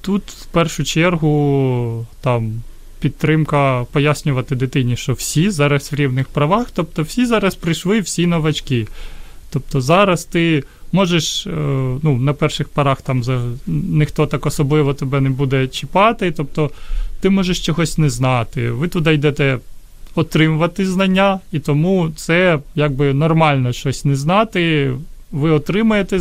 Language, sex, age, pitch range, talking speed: Ukrainian, male, 30-49, 135-175 Hz, 125 wpm